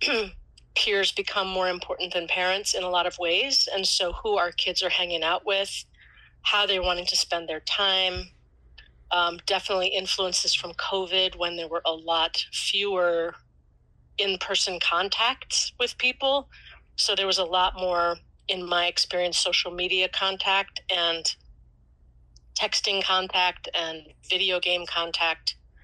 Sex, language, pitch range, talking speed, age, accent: female, English, 145-185 Hz, 140 wpm, 30-49, American